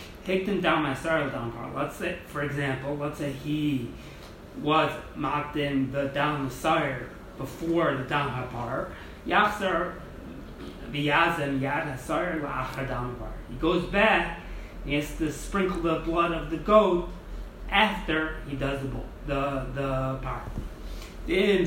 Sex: male